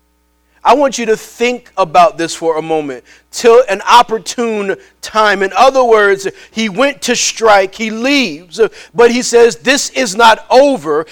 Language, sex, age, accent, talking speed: English, male, 40-59, American, 160 wpm